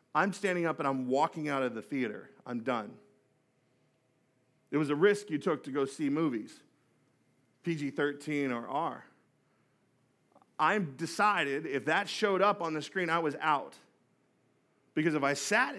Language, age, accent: English, 40-59, American